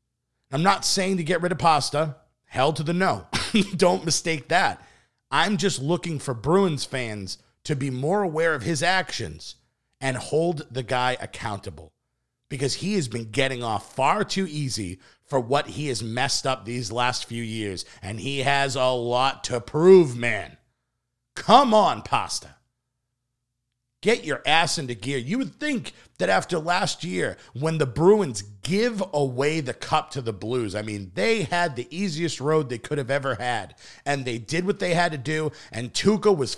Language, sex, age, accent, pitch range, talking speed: English, male, 50-69, American, 125-170 Hz, 175 wpm